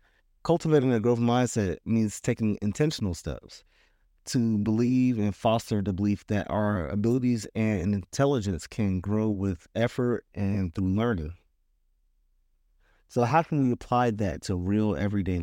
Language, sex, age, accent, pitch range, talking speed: English, male, 30-49, American, 95-115 Hz, 135 wpm